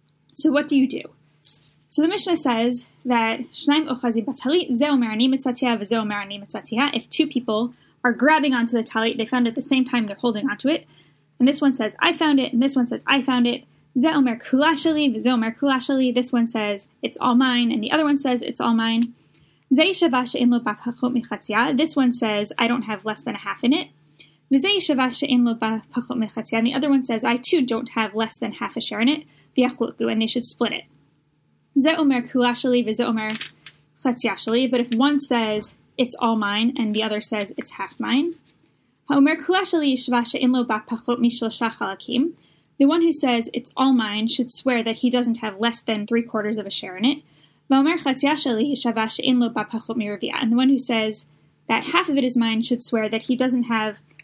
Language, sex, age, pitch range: English, female, 10-29, 225-270 Hz